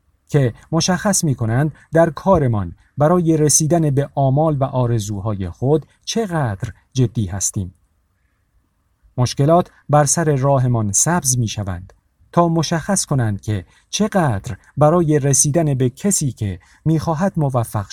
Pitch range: 95-150 Hz